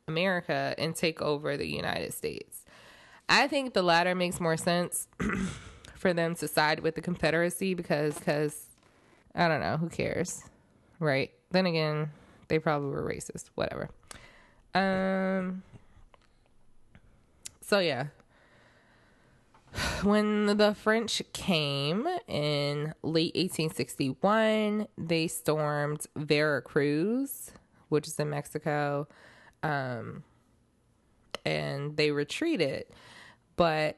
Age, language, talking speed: 20-39, English, 100 wpm